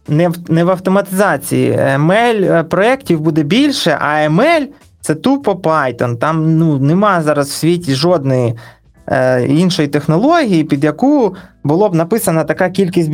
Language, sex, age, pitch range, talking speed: Ukrainian, male, 20-39, 145-185 Hz, 145 wpm